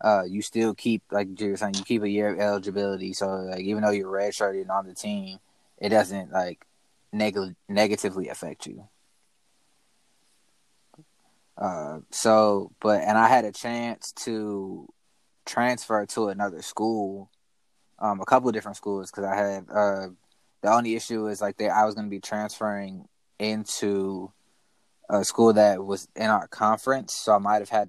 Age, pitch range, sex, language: 20-39, 100-110 Hz, male, English